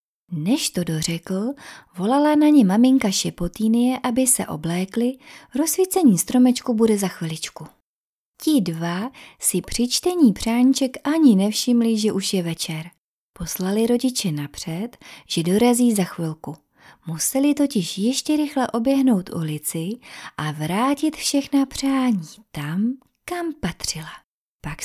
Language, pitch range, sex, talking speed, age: Czech, 175-255 Hz, female, 115 wpm, 30-49